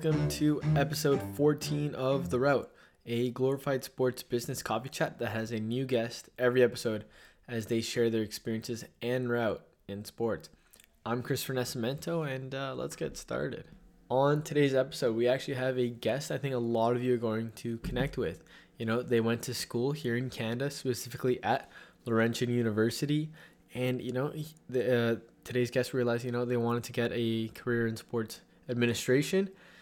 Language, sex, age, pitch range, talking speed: English, male, 20-39, 115-135 Hz, 175 wpm